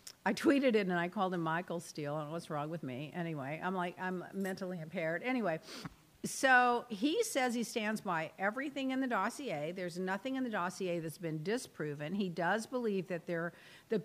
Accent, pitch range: American, 175-235 Hz